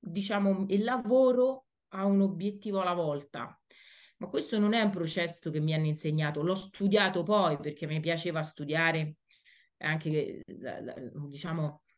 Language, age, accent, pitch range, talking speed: Italian, 30-49, native, 155-200 Hz, 135 wpm